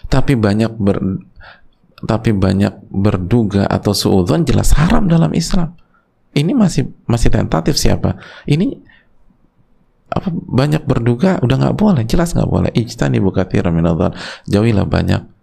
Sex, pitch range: male, 115-195 Hz